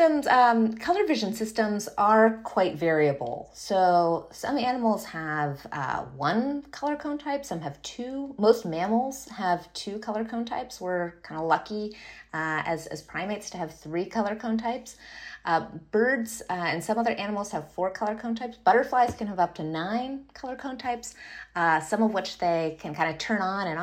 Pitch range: 160-235 Hz